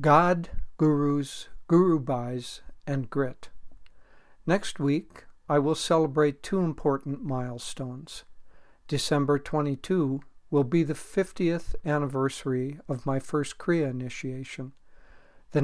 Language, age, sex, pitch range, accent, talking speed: English, 60-79, male, 135-155 Hz, American, 100 wpm